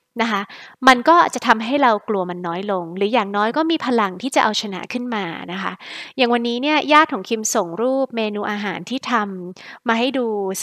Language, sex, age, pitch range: Thai, female, 20-39, 200-255 Hz